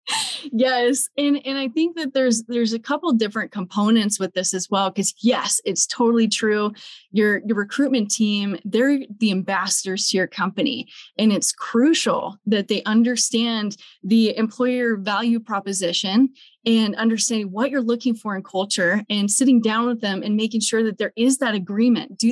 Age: 20-39